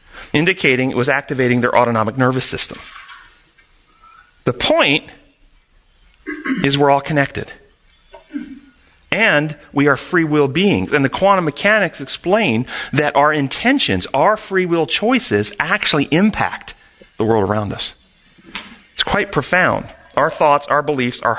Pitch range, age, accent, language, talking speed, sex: 125-175 Hz, 40-59, American, English, 130 wpm, male